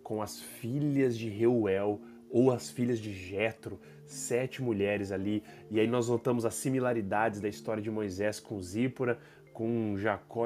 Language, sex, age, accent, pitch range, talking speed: Portuguese, male, 20-39, Brazilian, 110-155 Hz, 155 wpm